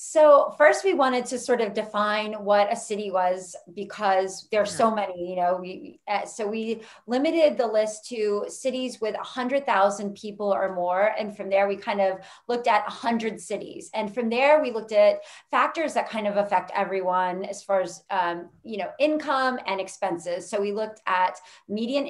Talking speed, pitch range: 195 wpm, 190-230 Hz